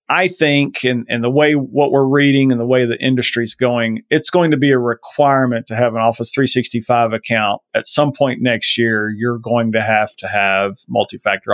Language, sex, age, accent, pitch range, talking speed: English, male, 40-59, American, 115-145 Hz, 200 wpm